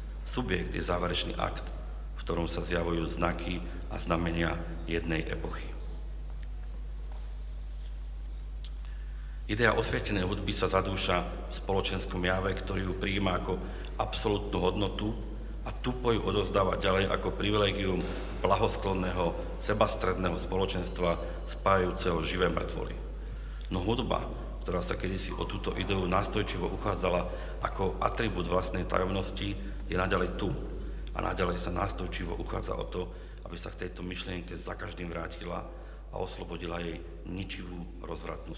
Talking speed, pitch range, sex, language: 120 wpm, 85-95 Hz, male, Slovak